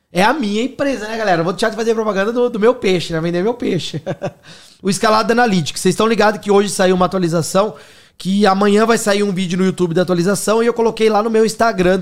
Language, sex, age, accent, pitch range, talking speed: Portuguese, male, 20-39, Brazilian, 175-220 Hz, 235 wpm